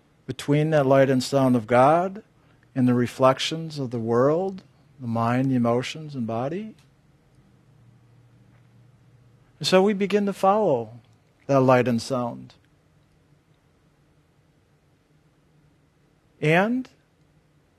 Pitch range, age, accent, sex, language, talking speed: 130-155 Hz, 50-69, American, male, English, 100 wpm